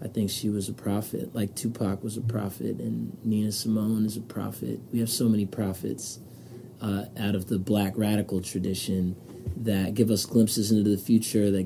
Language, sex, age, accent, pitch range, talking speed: English, male, 30-49, American, 100-115 Hz, 190 wpm